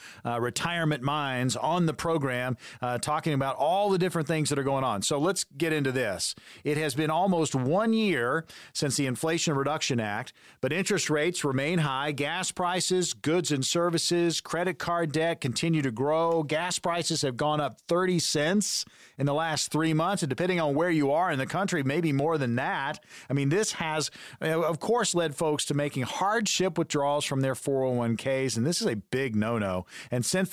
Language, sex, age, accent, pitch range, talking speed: English, male, 40-59, American, 135-170 Hz, 190 wpm